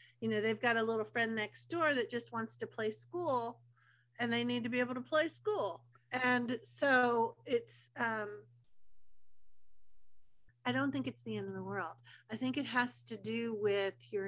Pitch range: 175-245 Hz